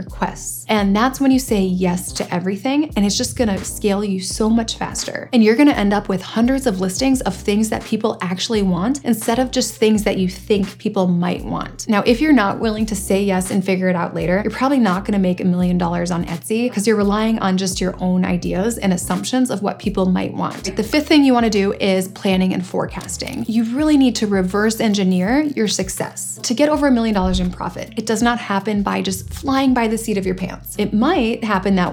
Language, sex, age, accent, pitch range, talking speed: English, female, 20-39, American, 190-245 Hz, 240 wpm